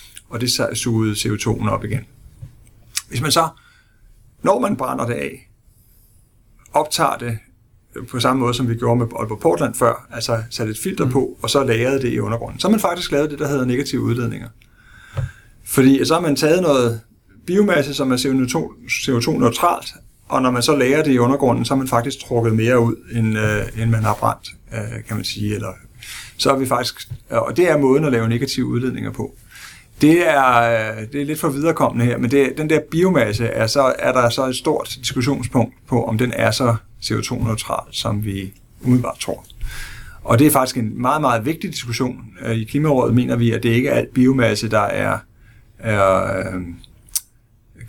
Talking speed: 185 wpm